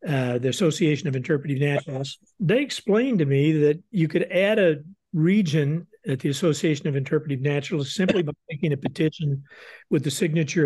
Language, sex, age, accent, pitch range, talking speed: English, male, 50-69, American, 145-175 Hz, 170 wpm